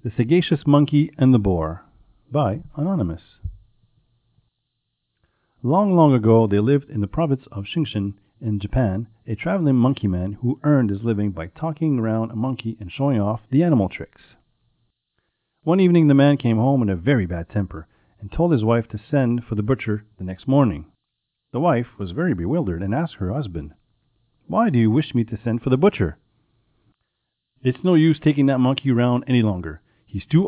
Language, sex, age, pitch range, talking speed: French, male, 40-59, 105-135 Hz, 180 wpm